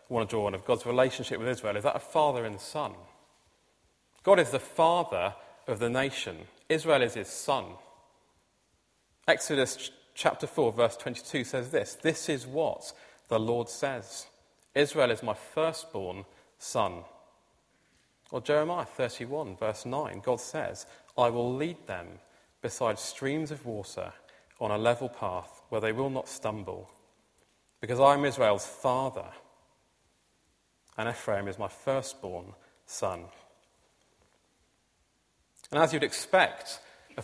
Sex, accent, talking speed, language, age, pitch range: male, British, 135 wpm, English, 30-49, 115-155 Hz